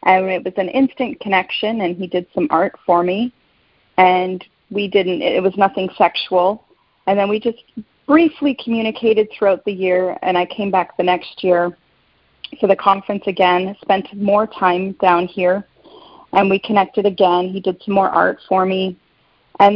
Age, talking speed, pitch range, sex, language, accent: 30-49, 175 wpm, 180-210 Hz, female, English, American